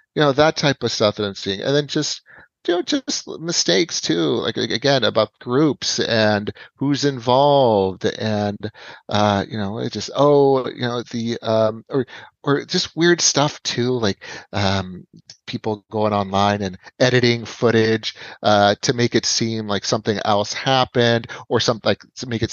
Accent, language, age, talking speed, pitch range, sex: American, English, 30-49, 170 wpm, 105-135 Hz, male